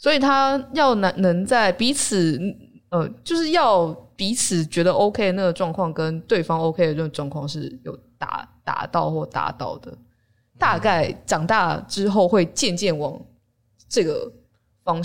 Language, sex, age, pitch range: Chinese, female, 20-39, 165-250 Hz